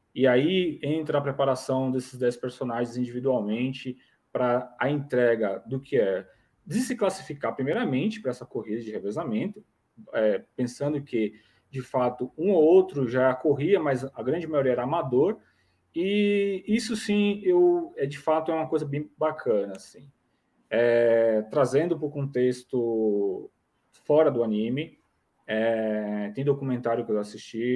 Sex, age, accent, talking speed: male, 20-39, Brazilian, 145 wpm